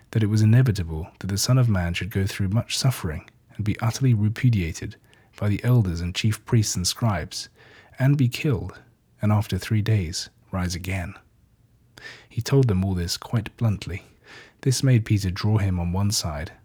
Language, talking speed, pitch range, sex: English, 180 wpm, 95-115 Hz, male